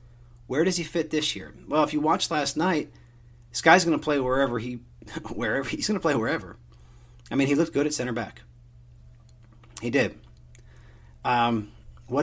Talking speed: 170 wpm